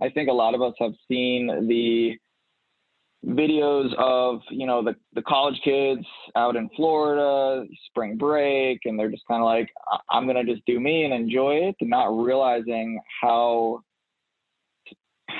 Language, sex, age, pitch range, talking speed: English, male, 20-39, 110-130 Hz, 160 wpm